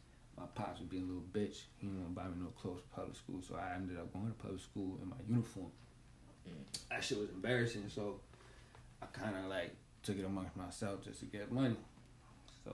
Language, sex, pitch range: English, male, 90-110 Hz